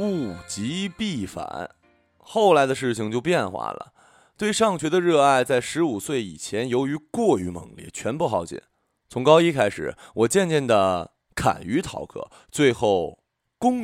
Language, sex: Chinese, male